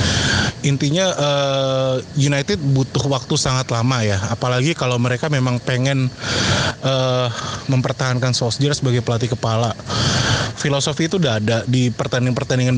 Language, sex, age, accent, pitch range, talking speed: Indonesian, male, 20-39, native, 125-140 Hz, 110 wpm